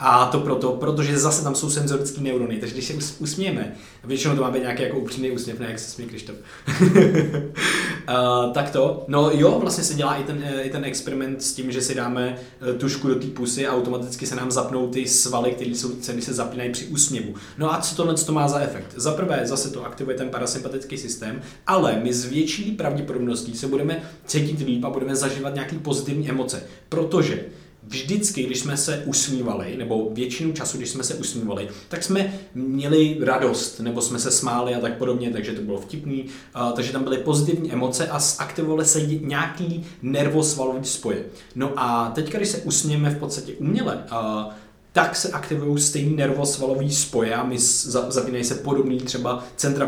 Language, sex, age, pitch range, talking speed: Czech, male, 20-39, 125-150 Hz, 190 wpm